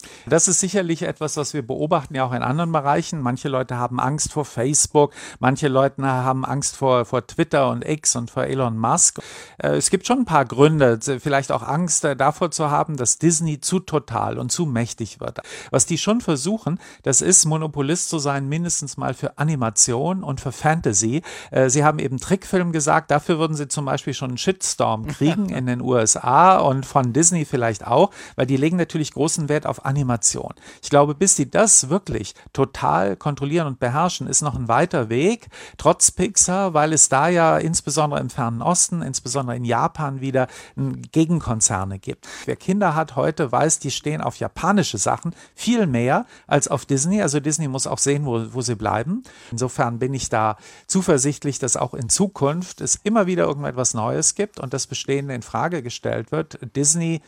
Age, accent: 50-69, German